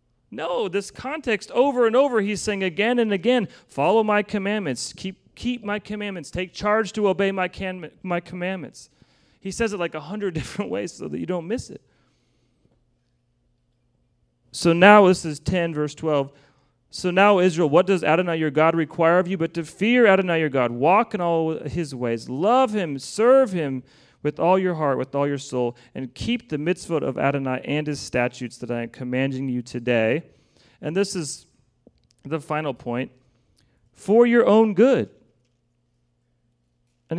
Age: 40-59